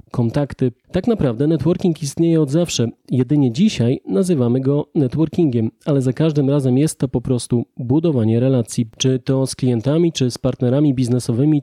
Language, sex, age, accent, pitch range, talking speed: Polish, male, 30-49, native, 125-155 Hz, 155 wpm